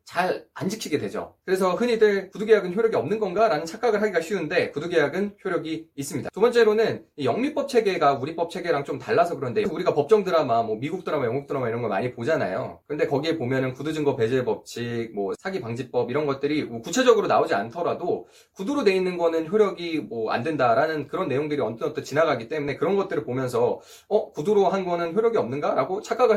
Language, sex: Korean, male